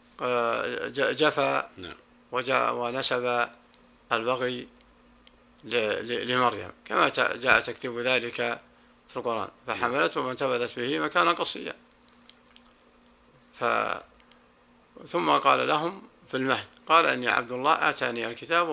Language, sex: Arabic, male